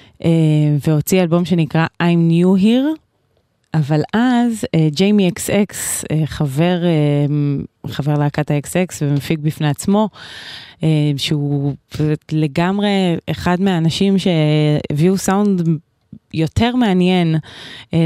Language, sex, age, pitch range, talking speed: Hebrew, female, 20-39, 150-195 Hz, 100 wpm